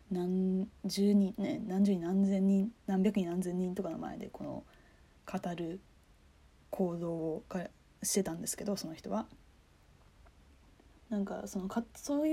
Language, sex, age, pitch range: Japanese, female, 20-39, 175-230 Hz